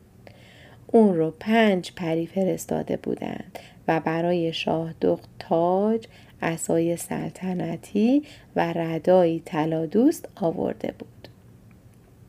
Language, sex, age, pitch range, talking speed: Persian, female, 30-49, 165-215 Hz, 80 wpm